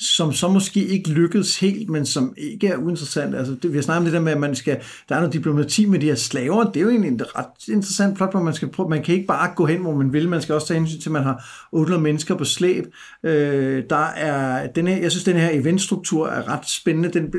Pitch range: 150-190 Hz